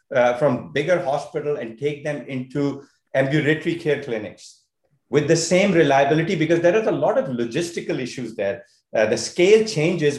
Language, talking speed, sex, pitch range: English, 165 wpm, male, 135-175 Hz